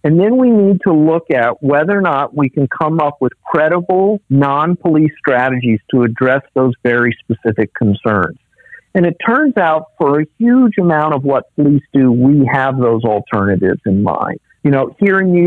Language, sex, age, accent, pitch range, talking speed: English, male, 50-69, American, 140-180 Hz, 180 wpm